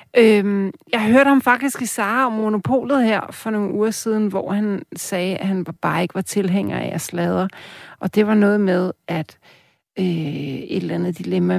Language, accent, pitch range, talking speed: Danish, native, 170-215 Hz, 190 wpm